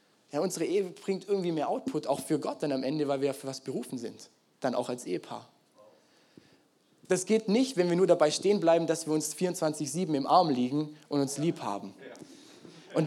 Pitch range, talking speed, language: 150-195 Hz, 205 wpm, German